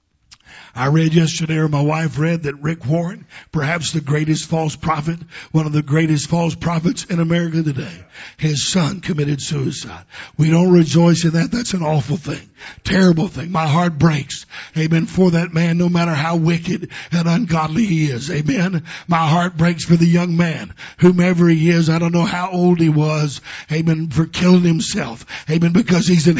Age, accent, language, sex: 60-79, American, English, male